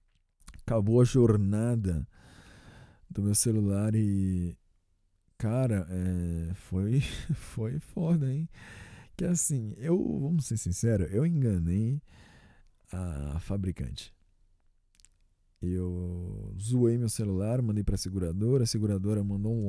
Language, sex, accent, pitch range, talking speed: Portuguese, male, Brazilian, 90-120 Hz, 105 wpm